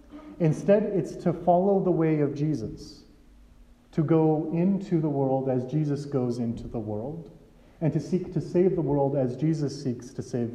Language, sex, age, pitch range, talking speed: English, male, 30-49, 130-160 Hz, 175 wpm